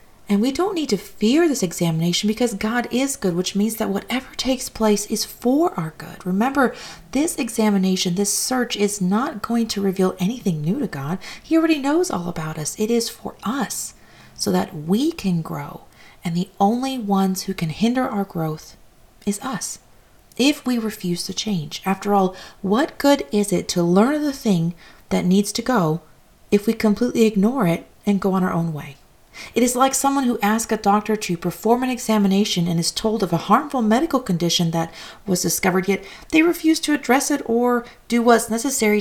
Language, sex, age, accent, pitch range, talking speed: English, female, 40-59, American, 185-240 Hz, 190 wpm